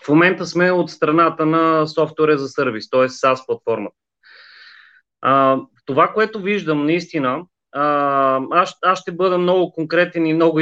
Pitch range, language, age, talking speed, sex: 140-175 Hz, Bulgarian, 30-49, 135 wpm, male